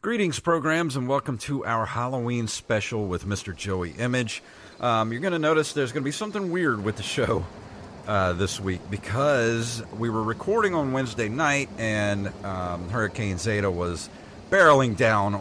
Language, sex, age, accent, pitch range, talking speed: English, male, 40-59, American, 95-135 Hz, 165 wpm